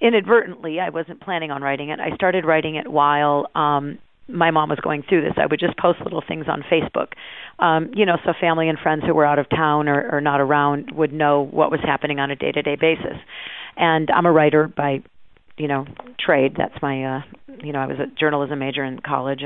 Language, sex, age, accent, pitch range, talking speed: English, female, 40-59, American, 145-160 Hz, 220 wpm